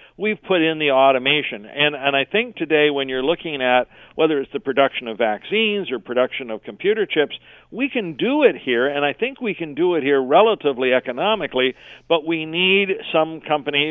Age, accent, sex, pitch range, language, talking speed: 50-69, American, male, 130-170 Hz, English, 195 wpm